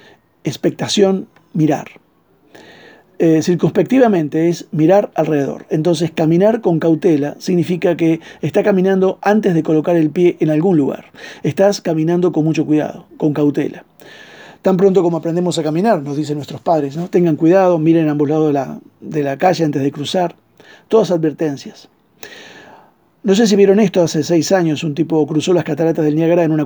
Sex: male